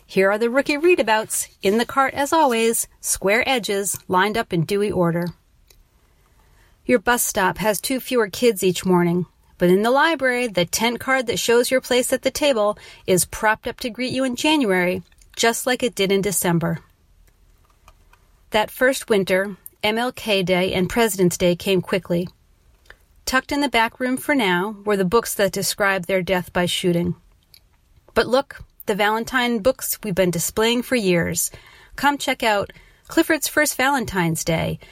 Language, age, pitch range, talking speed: English, 40-59, 180-250 Hz, 165 wpm